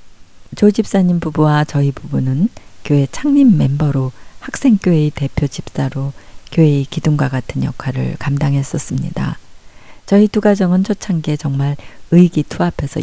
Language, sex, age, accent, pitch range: Korean, female, 40-59, native, 135-180 Hz